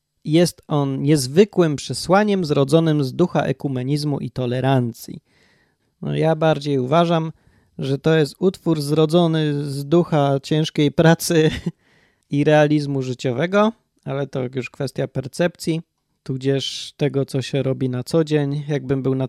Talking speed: 130 wpm